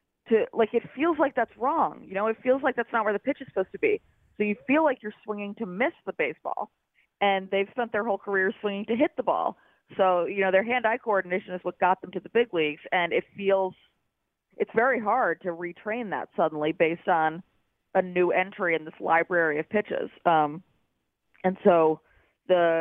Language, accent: English, American